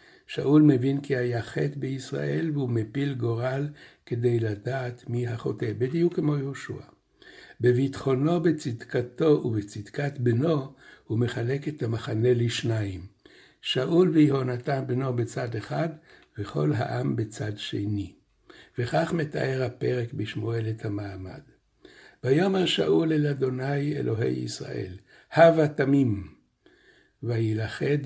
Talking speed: 105 wpm